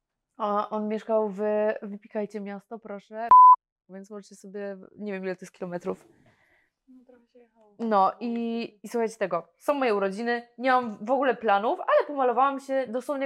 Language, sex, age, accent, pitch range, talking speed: Polish, female, 20-39, native, 220-260 Hz, 150 wpm